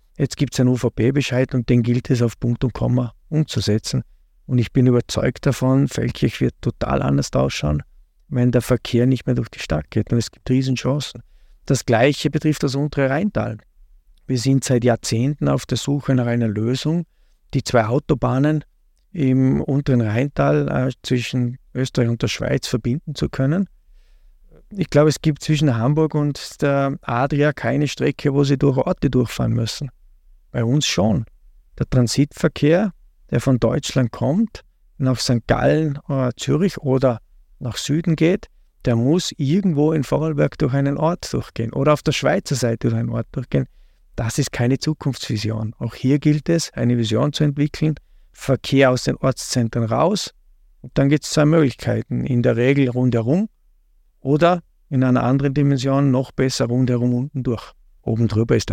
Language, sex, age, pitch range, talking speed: German, male, 50-69, 115-145 Hz, 165 wpm